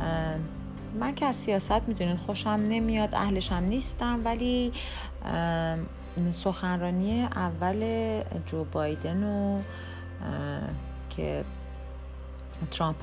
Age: 30-49